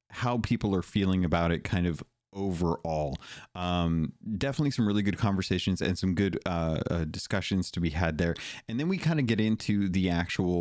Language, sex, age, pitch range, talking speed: English, male, 30-49, 80-110 Hz, 190 wpm